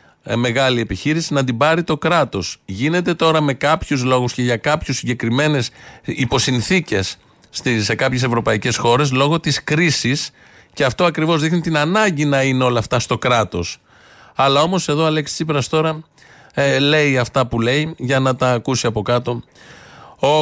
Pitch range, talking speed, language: 120-155 Hz, 160 wpm, Greek